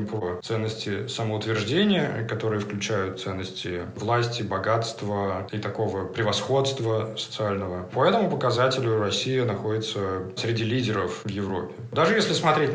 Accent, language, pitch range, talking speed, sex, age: native, Russian, 100-130 Hz, 115 wpm, male, 20-39